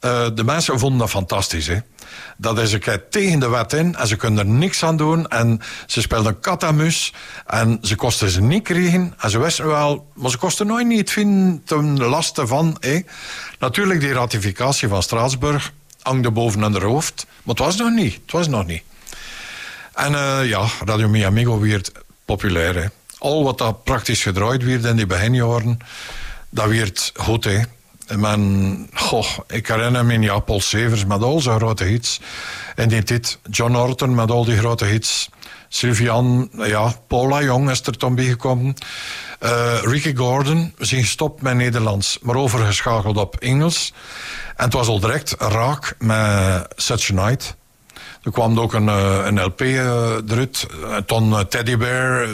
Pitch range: 110-135 Hz